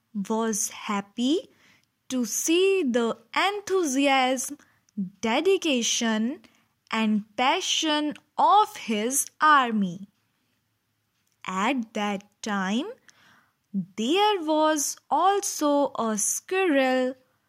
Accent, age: Indian, 20-39